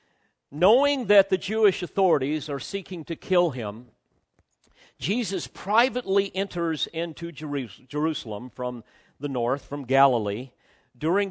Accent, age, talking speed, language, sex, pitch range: American, 50-69, 110 wpm, English, male, 140-200 Hz